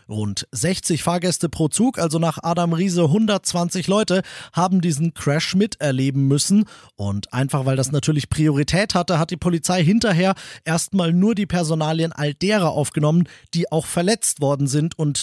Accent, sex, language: German, male, German